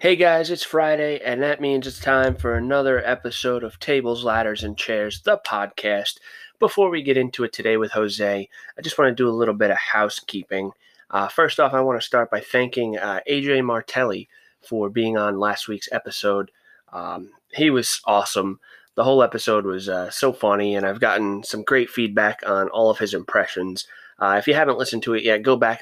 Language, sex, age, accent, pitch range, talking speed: English, male, 20-39, American, 100-125 Hz, 200 wpm